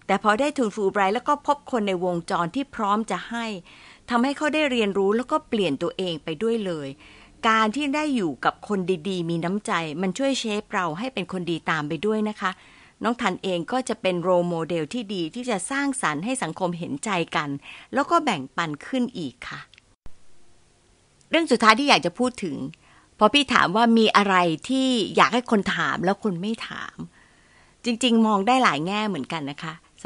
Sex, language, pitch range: female, Thai, 180-245 Hz